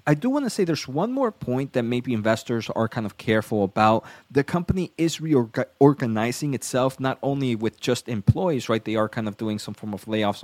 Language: English